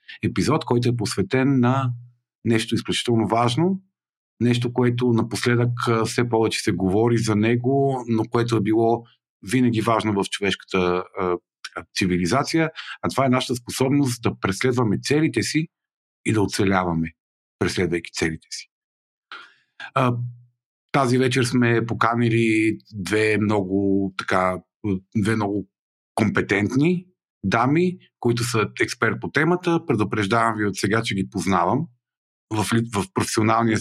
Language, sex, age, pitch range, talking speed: Bulgarian, male, 50-69, 100-120 Hz, 125 wpm